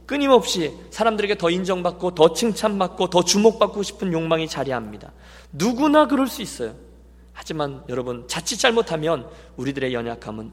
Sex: male